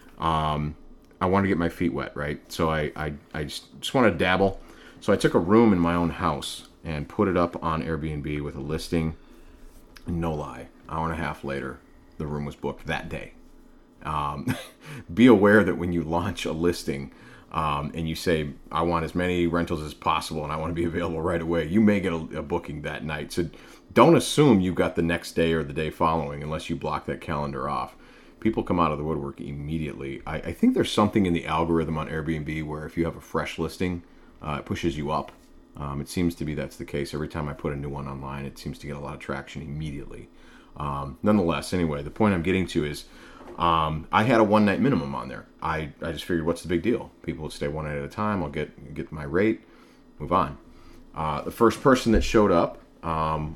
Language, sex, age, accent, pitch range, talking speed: English, male, 40-59, American, 75-85 Hz, 225 wpm